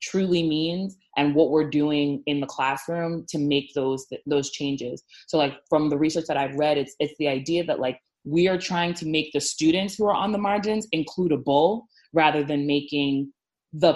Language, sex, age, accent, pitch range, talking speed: English, female, 20-39, American, 140-165 Hz, 195 wpm